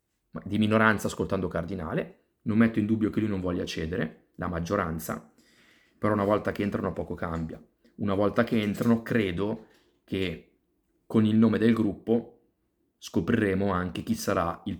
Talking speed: 155 wpm